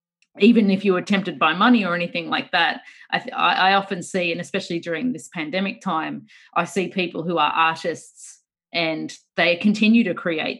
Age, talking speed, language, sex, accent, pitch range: 30-49, 180 wpm, English, female, Australian, 170-215 Hz